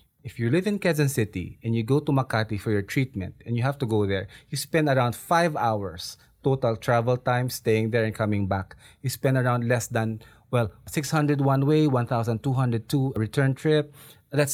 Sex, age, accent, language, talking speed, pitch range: male, 20-39, Filipino, English, 185 wpm, 110-145 Hz